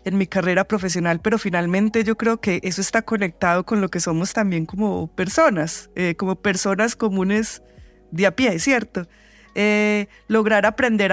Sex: female